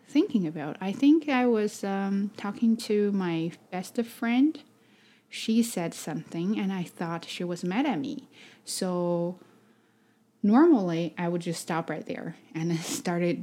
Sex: female